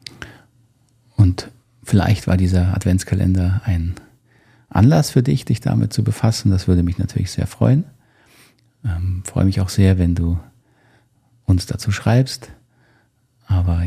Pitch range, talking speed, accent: 95-120 Hz, 130 wpm, German